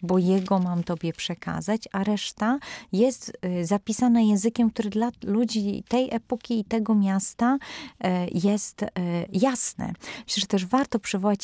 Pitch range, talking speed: 175-225 Hz, 145 wpm